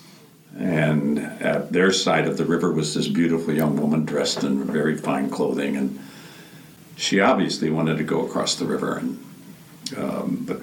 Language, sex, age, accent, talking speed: English, male, 60-79, American, 160 wpm